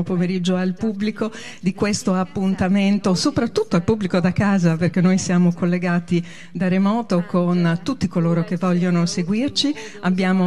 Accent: native